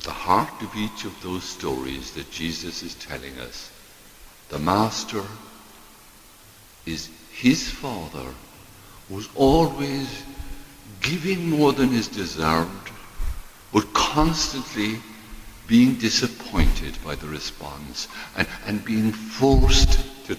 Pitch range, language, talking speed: 85-140 Hz, English, 105 wpm